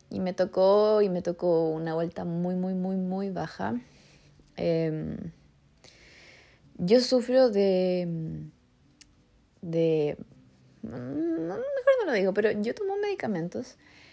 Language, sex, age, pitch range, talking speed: Spanish, female, 20-39, 165-195 Hz, 115 wpm